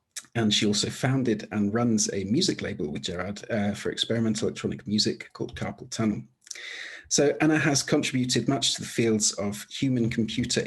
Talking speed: 170 wpm